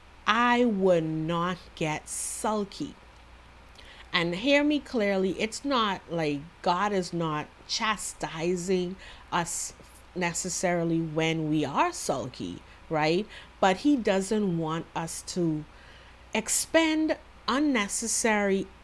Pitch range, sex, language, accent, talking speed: 165-270 Hz, female, English, American, 100 wpm